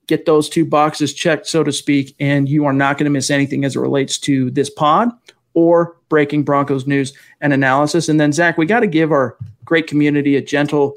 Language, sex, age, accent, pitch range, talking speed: English, male, 40-59, American, 140-160 Hz, 220 wpm